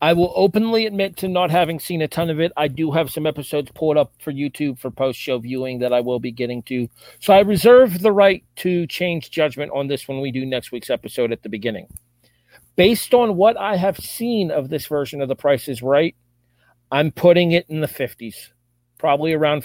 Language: English